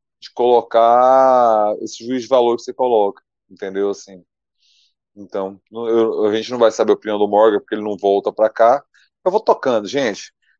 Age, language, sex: 20-39, Portuguese, male